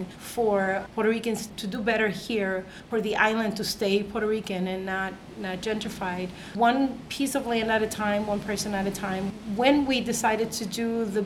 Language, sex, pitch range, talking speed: English, female, 195-220 Hz, 190 wpm